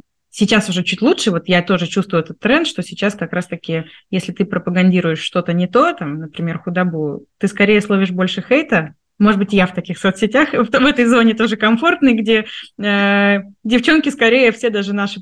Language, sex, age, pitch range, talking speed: Russian, female, 20-39, 175-225 Hz, 190 wpm